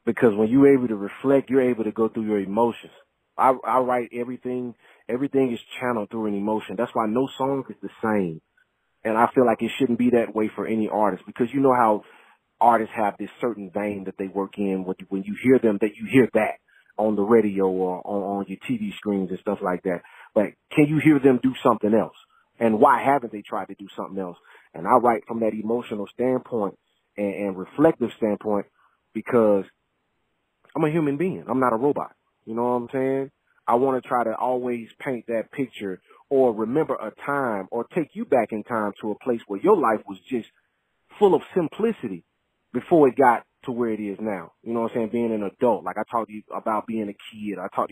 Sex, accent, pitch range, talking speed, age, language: male, American, 105-130 Hz, 220 wpm, 30-49, English